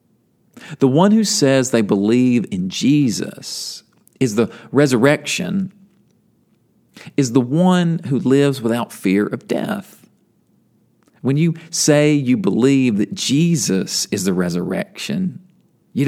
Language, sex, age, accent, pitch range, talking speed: English, male, 40-59, American, 120-185 Hz, 115 wpm